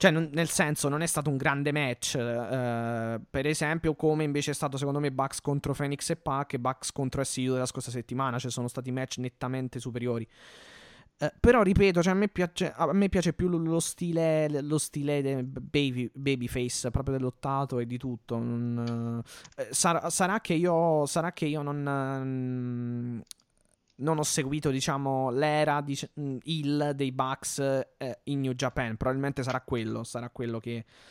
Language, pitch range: Italian, 130-155 Hz